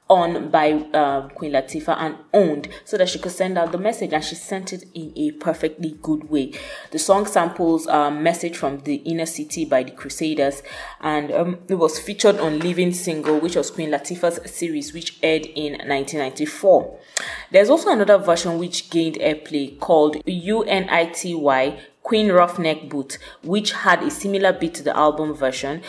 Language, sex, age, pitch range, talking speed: English, female, 20-39, 145-180 Hz, 170 wpm